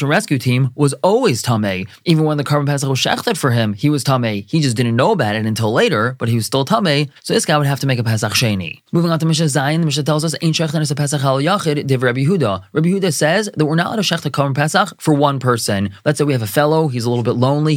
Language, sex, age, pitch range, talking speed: English, male, 20-39, 125-170 Hz, 290 wpm